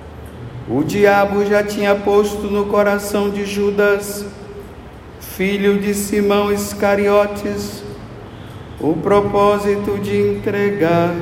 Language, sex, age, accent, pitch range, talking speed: Portuguese, male, 50-69, Brazilian, 200-205 Hz, 90 wpm